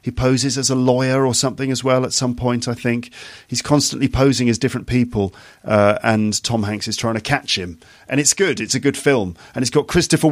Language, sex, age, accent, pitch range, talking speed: English, male, 40-59, British, 110-140 Hz, 235 wpm